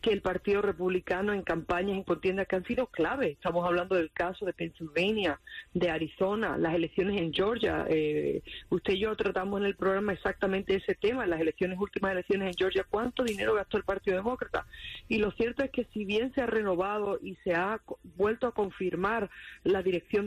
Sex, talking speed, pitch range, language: female, 190 wpm, 175-220 Hz, English